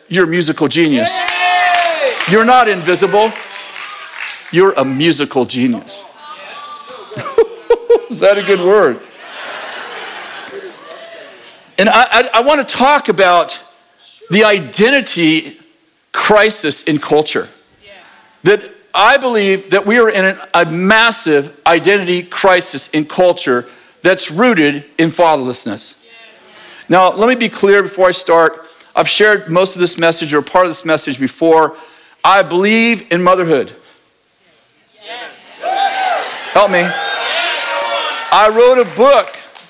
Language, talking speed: English, 115 wpm